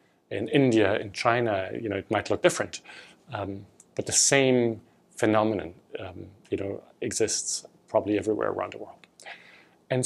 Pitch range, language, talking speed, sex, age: 110-140 Hz, English, 150 wpm, male, 40-59